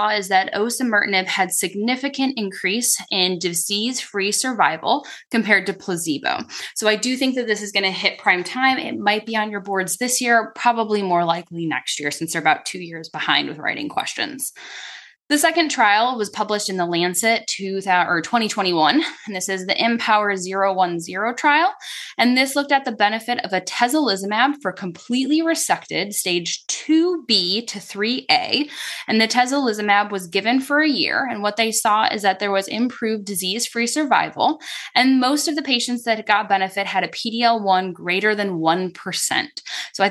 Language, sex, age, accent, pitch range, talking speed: English, female, 10-29, American, 190-255 Hz, 170 wpm